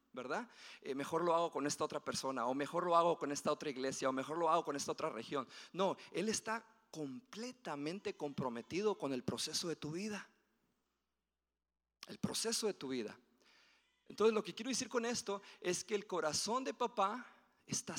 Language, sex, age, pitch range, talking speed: Spanish, male, 40-59, 160-225 Hz, 185 wpm